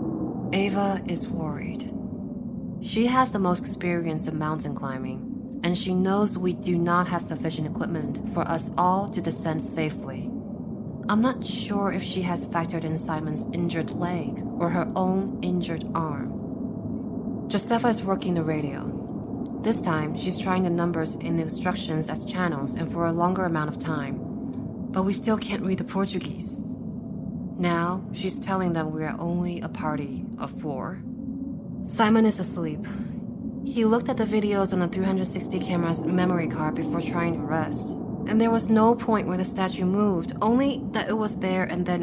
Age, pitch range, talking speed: 20-39, 180-230 Hz, 165 wpm